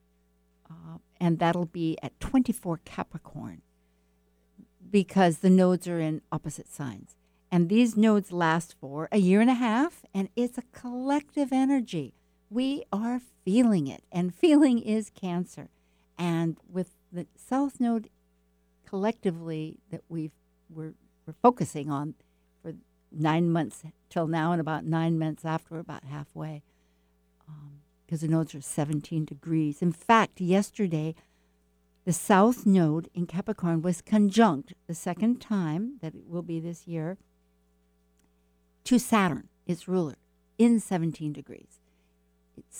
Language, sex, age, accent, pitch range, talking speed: English, female, 60-79, American, 135-200 Hz, 130 wpm